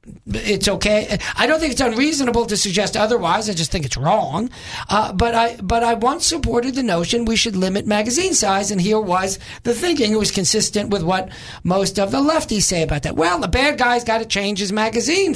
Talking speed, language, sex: 220 wpm, English, male